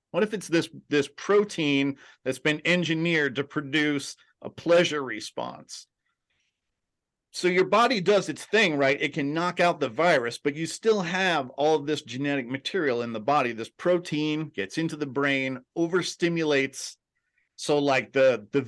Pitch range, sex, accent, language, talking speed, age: 130-155 Hz, male, American, English, 160 wpm, 40-59